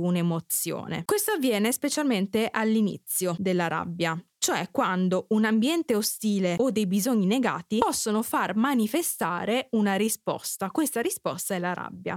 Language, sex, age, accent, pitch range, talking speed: Italian, female, 20-39, native, 185-240 Hz, 130 wpm